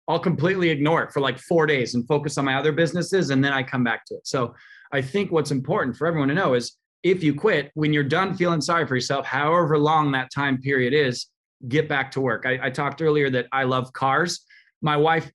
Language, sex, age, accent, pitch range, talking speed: English, male, 20-39, American, 135-165 Hz, 240 wpm